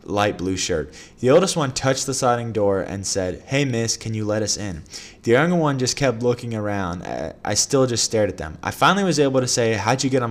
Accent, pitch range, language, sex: American, 100-125 Hz, English, male